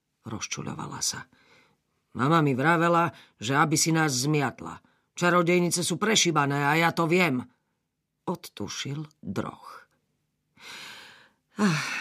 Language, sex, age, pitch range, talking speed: Slovak, female, 40-59, 110-170 Hz, 100 wpm